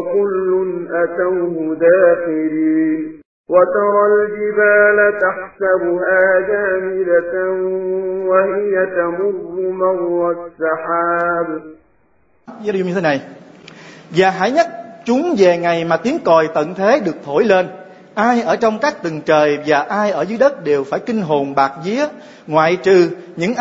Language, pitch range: Vietnamese, 165-215 Hz